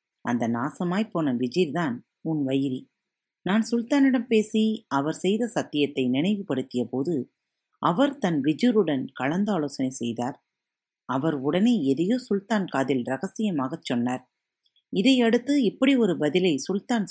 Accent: native